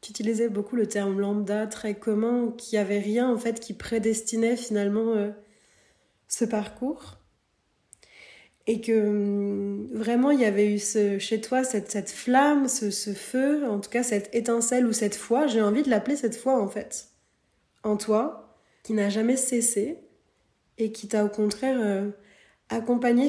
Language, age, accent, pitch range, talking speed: French, 20-39, French, 210-245 Hz, 165 wpm